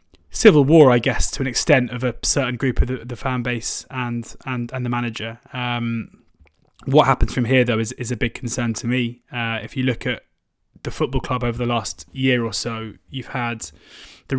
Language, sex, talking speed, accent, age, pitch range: English, male, 215 wpm, British, 20-39, 120-135 Hz